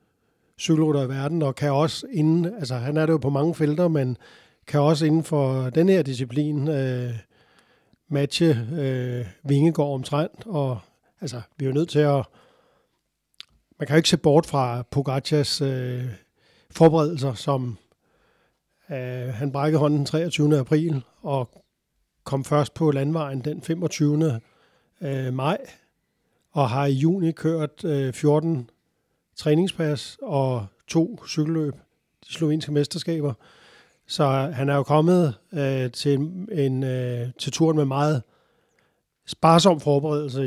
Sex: male